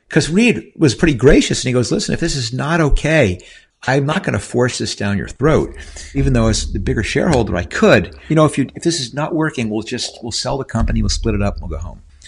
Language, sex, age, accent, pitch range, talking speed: English, male, 60-79, American, 95-140 Hz, 265 wpm